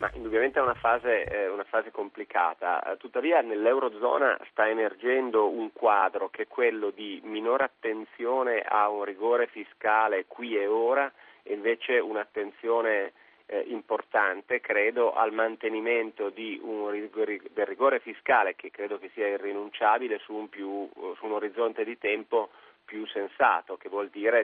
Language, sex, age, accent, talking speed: Italian, male, 30-49, native, 145 wpm